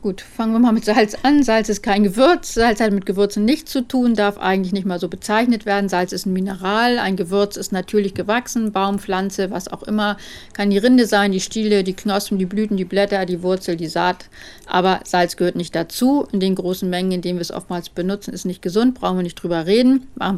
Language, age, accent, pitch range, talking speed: German, 50-69, German, 185-225 Hz, 235 wpm